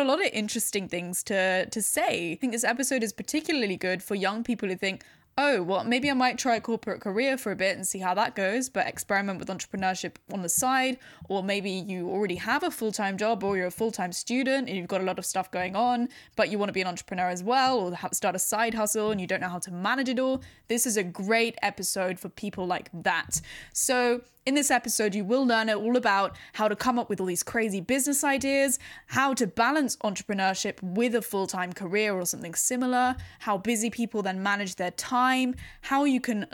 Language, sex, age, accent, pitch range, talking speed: English, female, 10-29, British, 190-245 Hz, 230 wpm